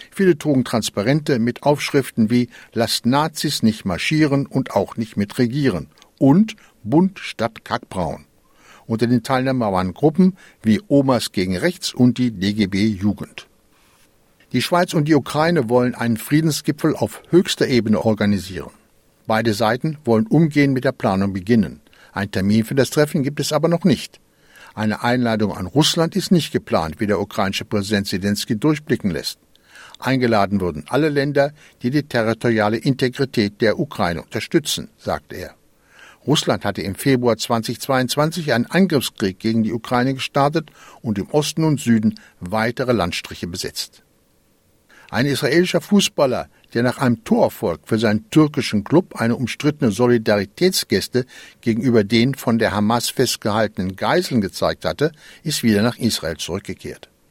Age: 60-79